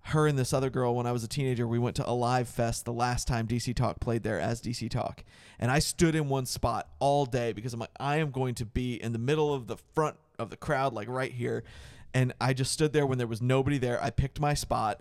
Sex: male